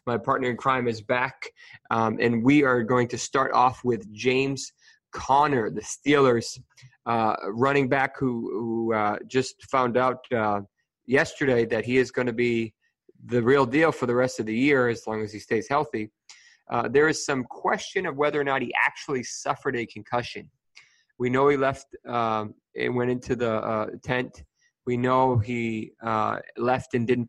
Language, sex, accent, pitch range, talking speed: English, male, American, 115-135 Hz, 180 wpm